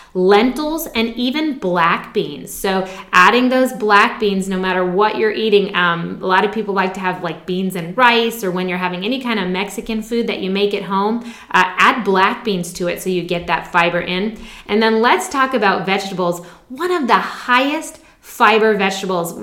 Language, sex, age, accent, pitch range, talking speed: English, female, 20-39, American, 185-245 Hz, 200 wpm